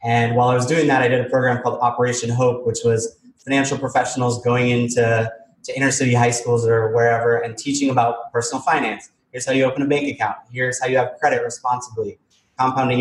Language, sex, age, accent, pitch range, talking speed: English, male, 20-39, American, 115-130 Hz, 205 wpm